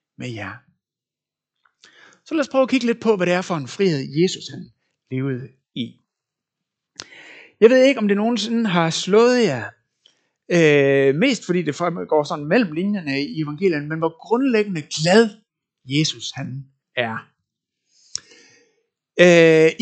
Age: 60-79